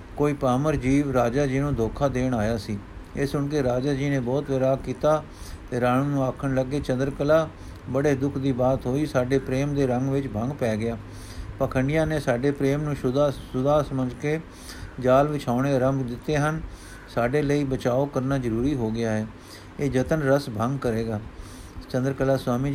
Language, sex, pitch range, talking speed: Punjabi, male, 120-145 Hz, 175 wpm